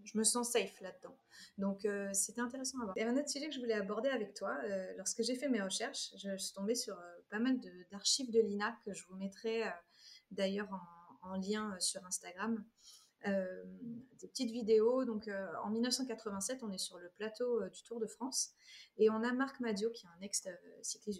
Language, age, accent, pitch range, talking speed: French, 30-49, French, 195-245 Hz, 225 wpm